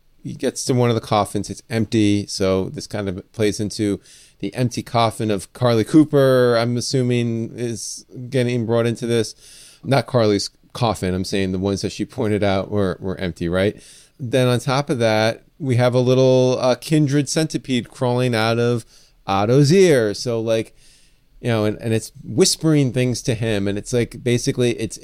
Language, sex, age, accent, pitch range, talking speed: English, male, 30-49, American, 105-135 Hz, 180 wpm